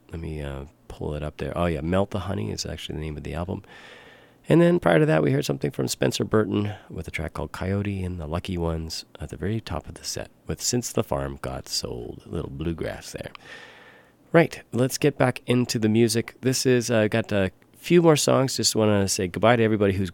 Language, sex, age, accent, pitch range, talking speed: English, male, 30-49, American, 85-115 Hz, 240 wpm